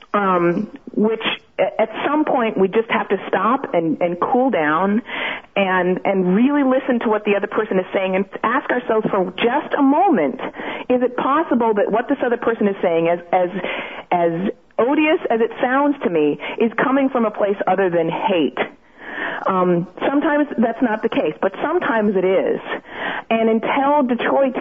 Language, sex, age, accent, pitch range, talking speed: English, female, 40-59, American, 200-275 Hz, 175 wpm